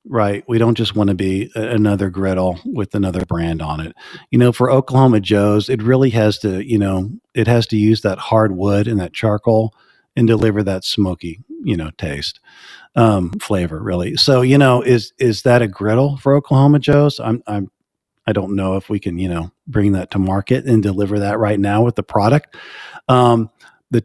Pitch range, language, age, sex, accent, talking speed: 100-125 Hz, English, 40-59, male, American, 200 wpm